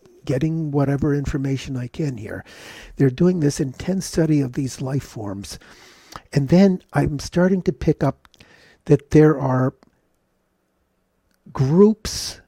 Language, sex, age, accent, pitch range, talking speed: English, male, 50-69, American, 125-155 Hz, 125 wpm